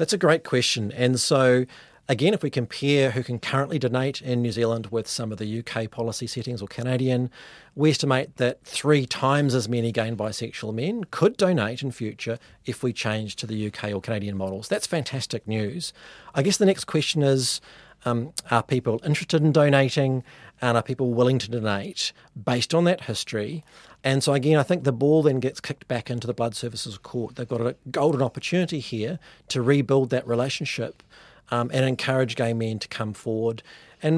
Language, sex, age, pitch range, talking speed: English, male, 40-59, 120-155 Hz, 190 wpm